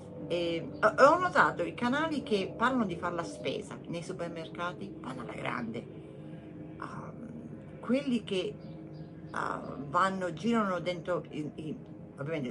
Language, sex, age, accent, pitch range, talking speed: Italian, female, 40-59, native, 150-185 Hz, 95 wpm